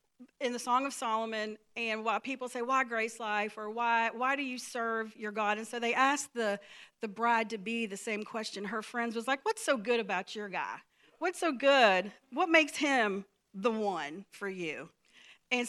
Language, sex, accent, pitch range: English, female, American, 210-265 Hz